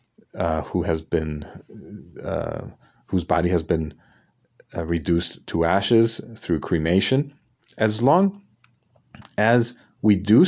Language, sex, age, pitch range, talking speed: English, male, 40-59, 80-100 Hz, 115 wpm